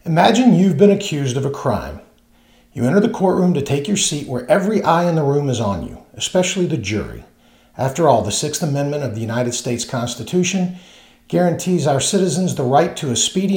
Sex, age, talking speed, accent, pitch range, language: male, 50-69, 200 wpm, American, 115-170 Hz, English